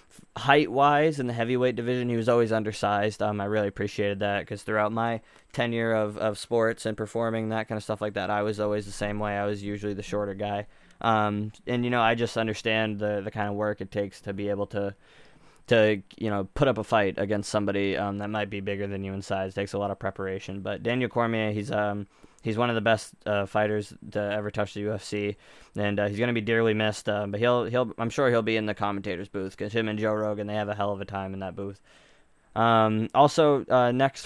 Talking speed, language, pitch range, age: 240 wpm, English, 100-110 Hz, 20-39